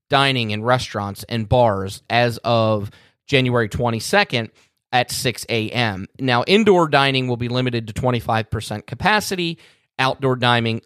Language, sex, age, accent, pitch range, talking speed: English, male, 30-49, American, 110-150 Hz, 125 wpm